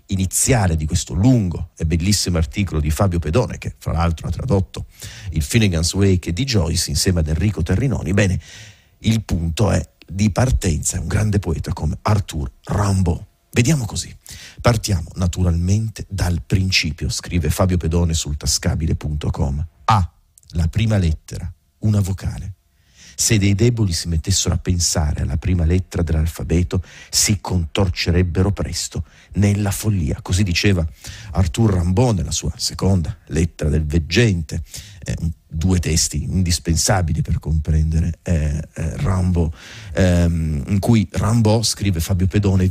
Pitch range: 80-100 Hz